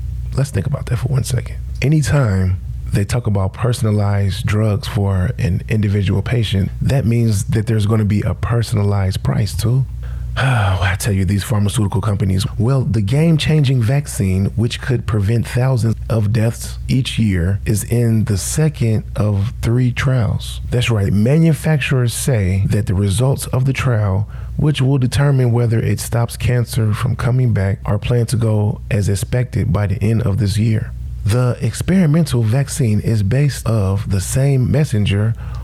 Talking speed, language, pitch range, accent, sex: 160 wpm, English, 105-130 Hz, American, male